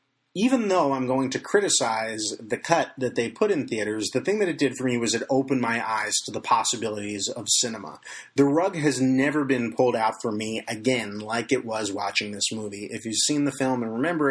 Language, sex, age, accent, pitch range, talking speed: English, male, 30-49, American, 115-140 Hz, 220 wpm